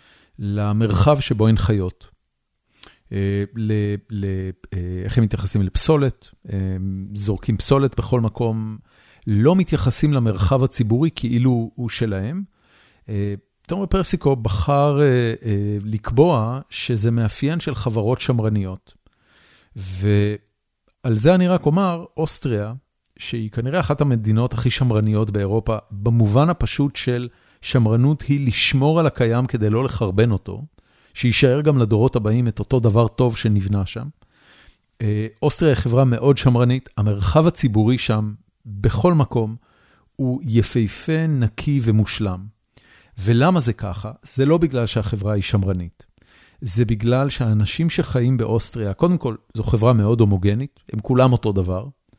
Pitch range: 105-135 Hz